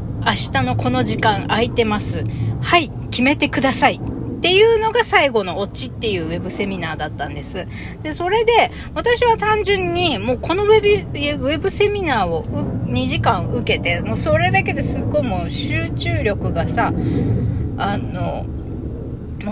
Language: Japanese